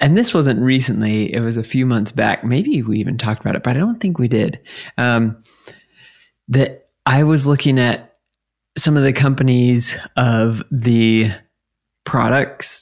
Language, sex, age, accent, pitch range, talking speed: English, male, 20-39, American, 110-130 Hz, 165 wpm